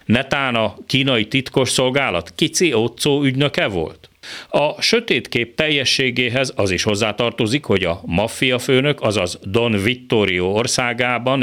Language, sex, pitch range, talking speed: Hungarian, male, 100-135 Hz, 115 wpm